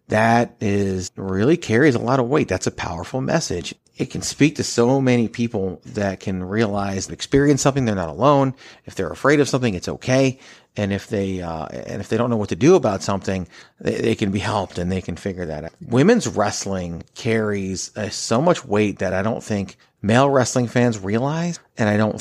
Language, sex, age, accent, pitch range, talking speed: English, male, 40-59, American, 95-120 Hz, 210 wpm